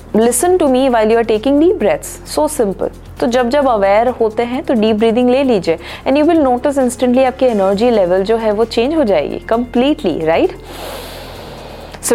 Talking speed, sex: 190 wpm, female